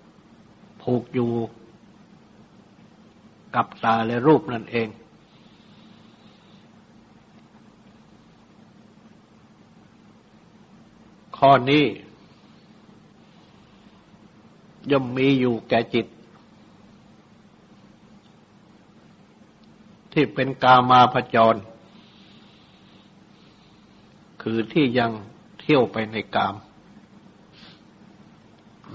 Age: 60-79